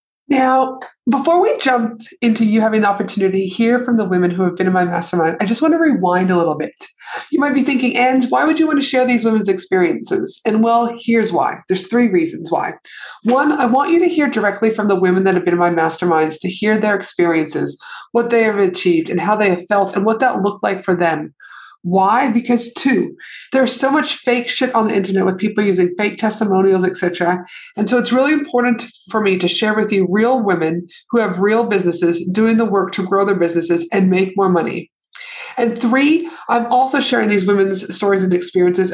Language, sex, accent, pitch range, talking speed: English, female, American, 185-245 Hz, 220 wpm